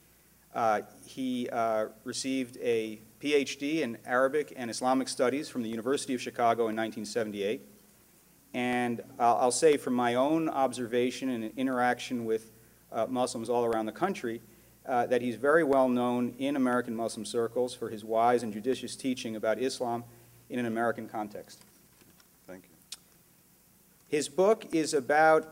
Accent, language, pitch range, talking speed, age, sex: American, English, 115-140 Hz, 145 wpm, 40-59, male